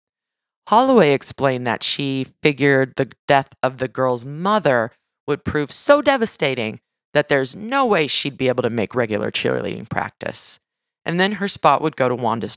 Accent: American